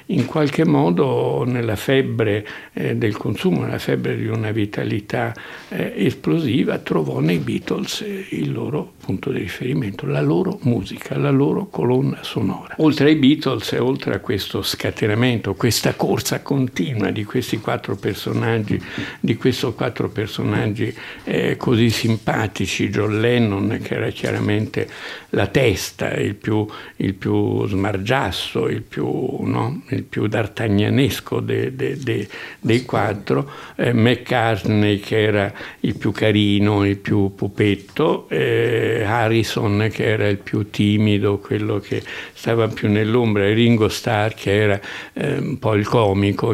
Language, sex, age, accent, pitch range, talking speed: Italian, male, 60-79, native, 100-125 Hz, 135 wpm